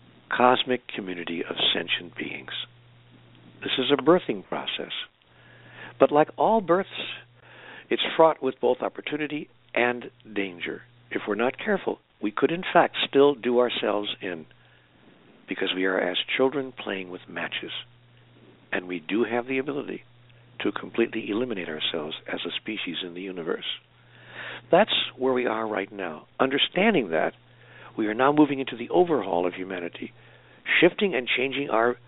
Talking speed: 145 wpm